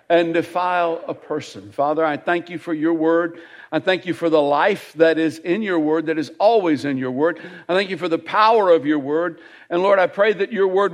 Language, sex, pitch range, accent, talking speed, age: English, male, 150-185 Hz, American, 240 wpm, 60-79